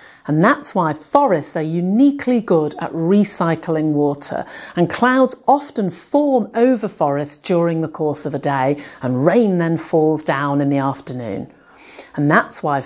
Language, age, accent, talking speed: English, 40-59, British, 155 wpm